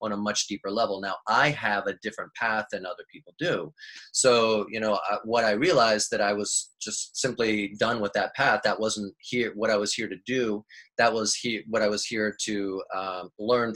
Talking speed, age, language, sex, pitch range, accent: 215 wpm, 30-49, English, male, 100-120 Hz, American